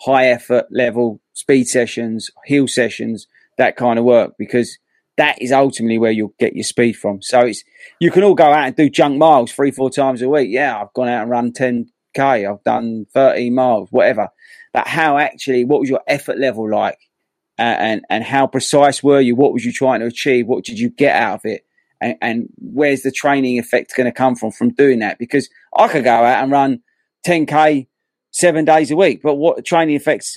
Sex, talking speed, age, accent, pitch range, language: male, 210 wpm, 30-49, British, 120-145 Hz, English